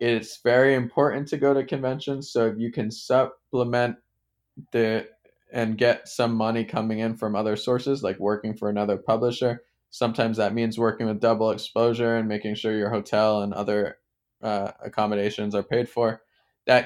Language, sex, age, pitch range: English, male, 20-39, 105-120 Hz